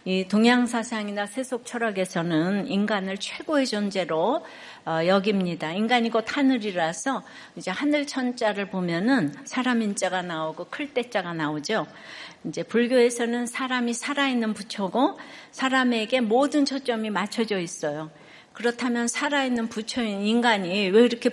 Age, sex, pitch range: 60-79, female, 195-245 Hz